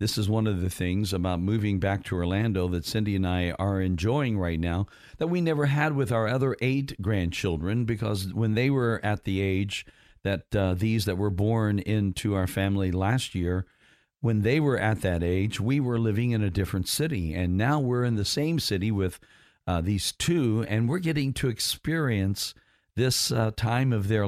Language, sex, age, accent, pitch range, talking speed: English, male, 50-69, American, 95-120 Hz, 200 wpm